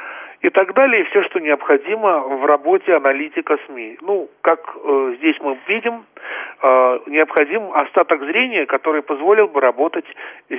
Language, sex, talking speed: Russian, male, 135 wpm